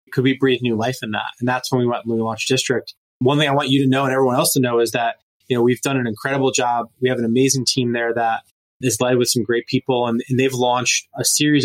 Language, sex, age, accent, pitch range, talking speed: English, male, 20-39, American, 120-135 Hz, 290 wpm